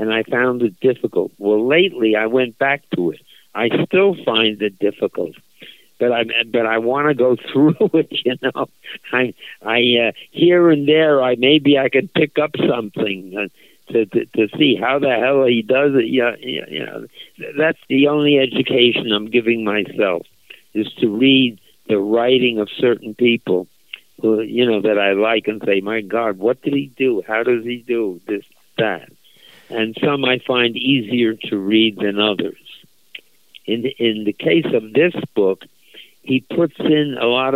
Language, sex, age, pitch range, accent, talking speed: English, male, 60-79, 105-130 Hz, American, 175 wpm